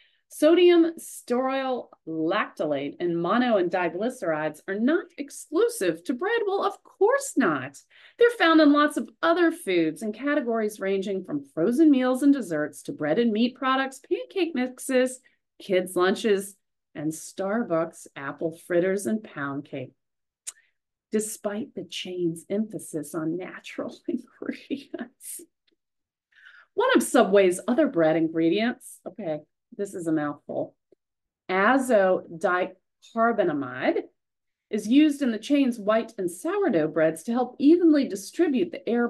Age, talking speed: 40-59, 125 wpm